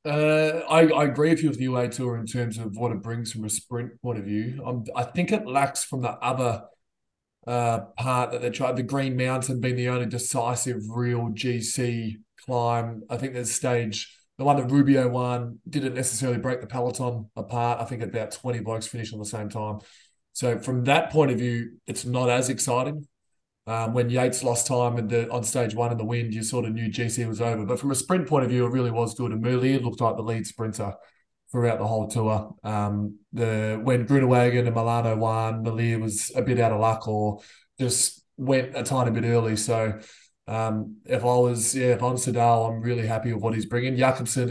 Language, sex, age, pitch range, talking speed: English, male, 20-39, 115-125 Hz, 215 wpm